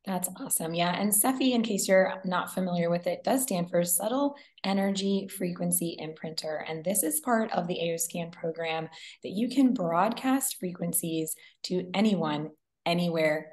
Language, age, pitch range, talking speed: English, 20-39, 165-205 Hz, 155 wpm